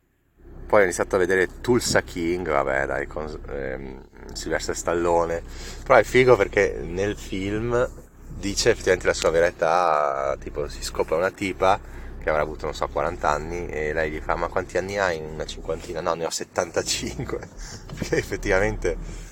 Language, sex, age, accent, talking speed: Italian, male, 30-49, native, 165 wpm